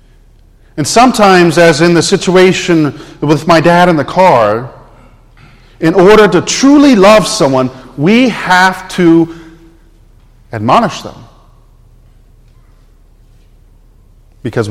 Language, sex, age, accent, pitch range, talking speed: English, male, 40-59, American, 120-180 Hz, 100 wpm